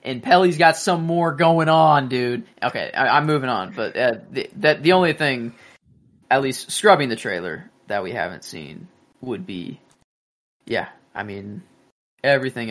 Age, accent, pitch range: 20-39, American, 125-160 Hz